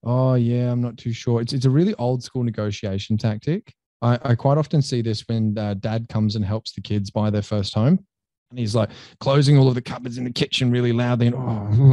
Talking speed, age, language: 235 wpm, 20-39, English